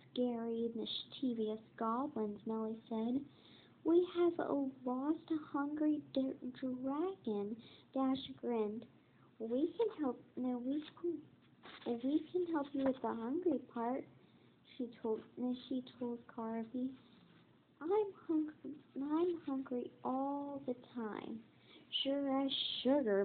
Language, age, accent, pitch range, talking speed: English, 40-59, American, 230-305 Hz, 110 wpm